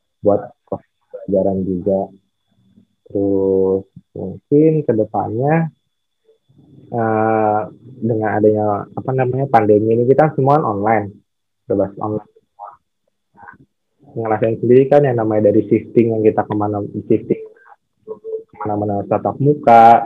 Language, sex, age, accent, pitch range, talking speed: Indonesian, male, 20-39, native, 100-120 Hz, 95 wpm